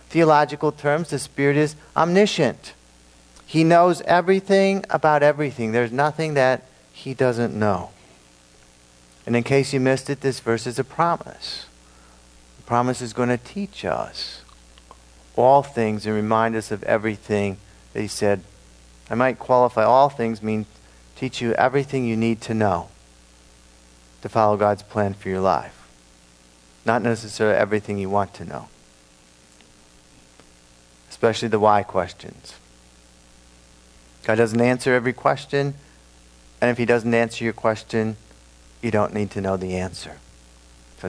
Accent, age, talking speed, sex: American, 50-69, 140 wpm, male